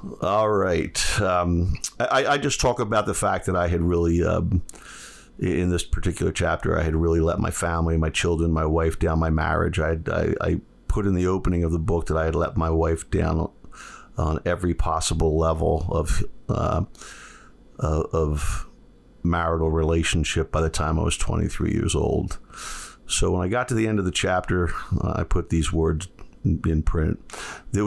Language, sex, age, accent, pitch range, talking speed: English, male, 50-69, American, 80-95 Hz, 180 wpm